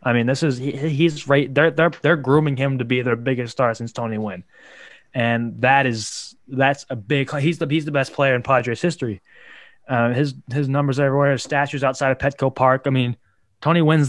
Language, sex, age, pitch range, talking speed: English, male, 20-39, 115-135 Hz, 200 wpm